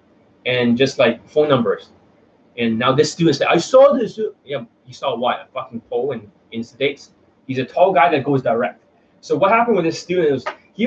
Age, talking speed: 20-39, 210 wpm